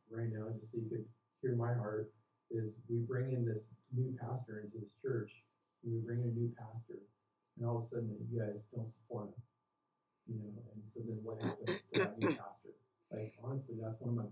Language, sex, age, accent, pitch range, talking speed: English, male, 40-59, American, 115-180 Hz, 220 wpm